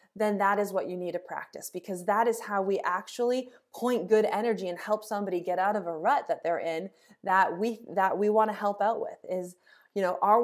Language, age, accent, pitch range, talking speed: English, 20-39, American, 180-245 Hz, 235 wpm